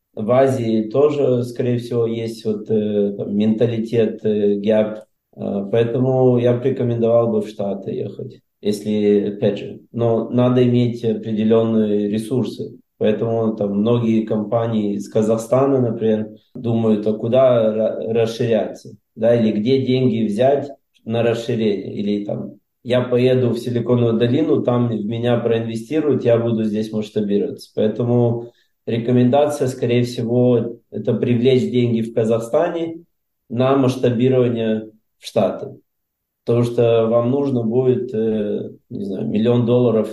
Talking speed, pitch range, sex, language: 125 wpm, 110-125 Hz, male, Russian